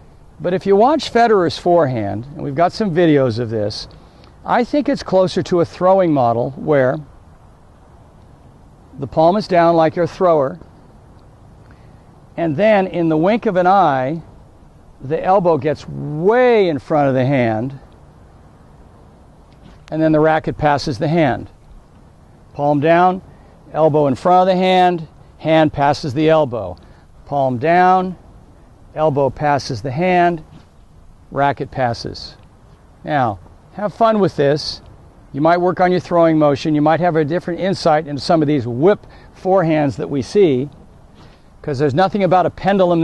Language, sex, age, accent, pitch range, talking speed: English, male, 60-79, American, 130-175 Hz, 150 wpm